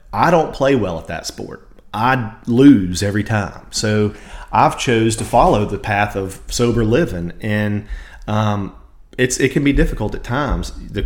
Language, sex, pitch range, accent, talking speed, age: English, male, 100-130 Hz, American, 170 wpm, 30-49